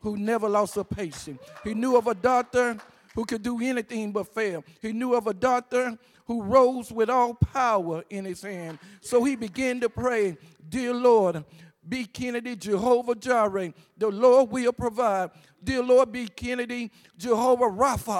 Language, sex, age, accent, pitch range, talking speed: English, male, 50-69, American, 200-250 Hz, 165 wpm